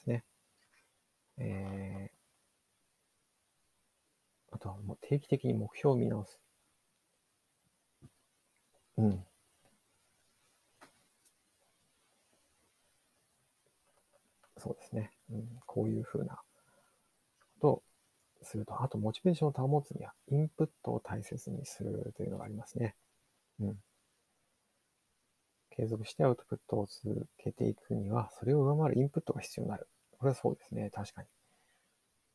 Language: Japanese